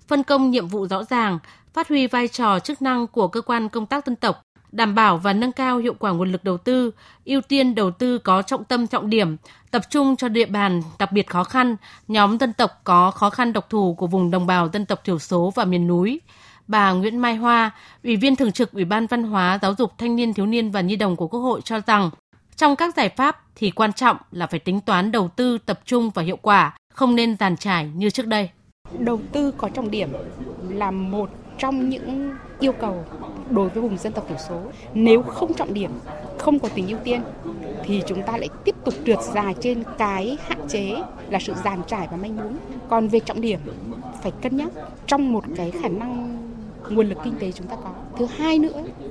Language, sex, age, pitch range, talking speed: Vietnamese, female, 20-39, 195-245 Hz, 225 wpm